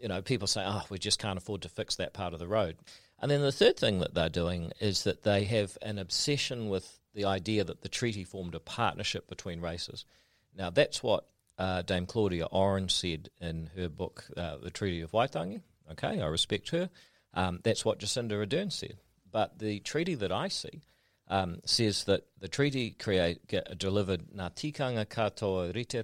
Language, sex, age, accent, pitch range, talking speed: English, male, 40-59, Australian, 90-110 Hz, 200 wpm